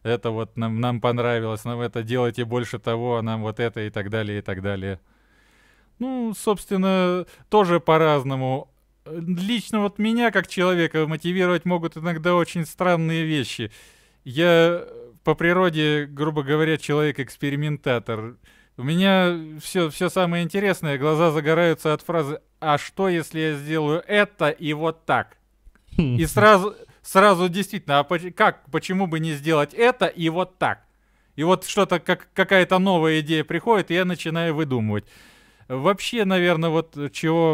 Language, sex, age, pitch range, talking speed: Russian, male, 20-39, 125-175 Hz, 145 wpm